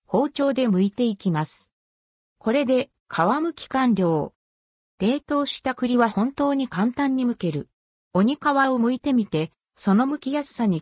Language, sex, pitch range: Japanese, female, 180-265 Hz